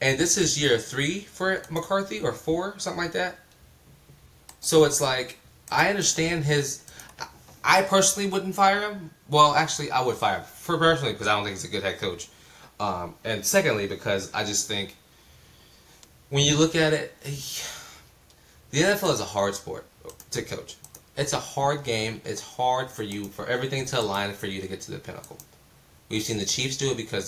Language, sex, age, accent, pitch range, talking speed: English, male, 20-39, American, 105-155 Hz, 185 wpm